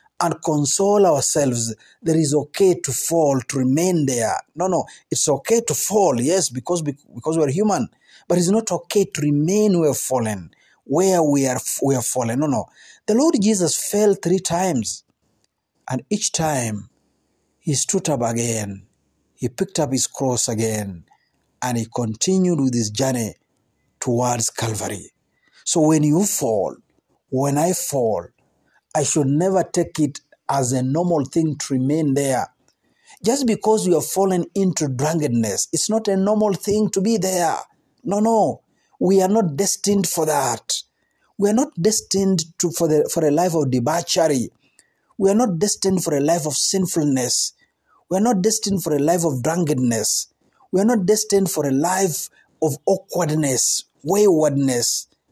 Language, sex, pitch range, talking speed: Swahili, male, 135-195 Hz, 160 wpm